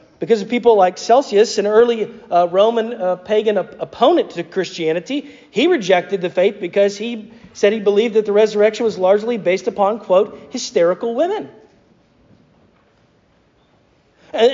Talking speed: 140 wpm